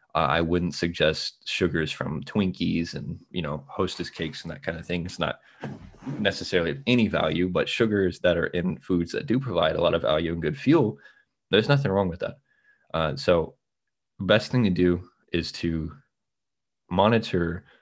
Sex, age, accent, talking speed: male, 20-39, American, 180 wpm